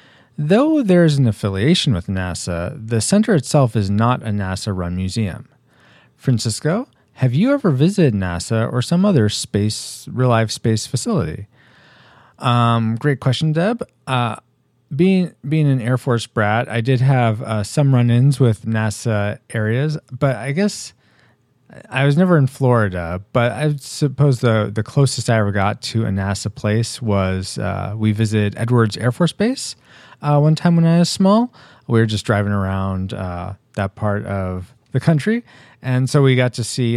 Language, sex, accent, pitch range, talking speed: English, male, American, 105-140 Hz, 165 wpm